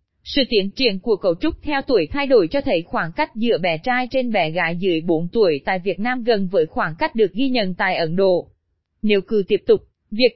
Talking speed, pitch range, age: 235 wpm, 200-255 Hz, 20-39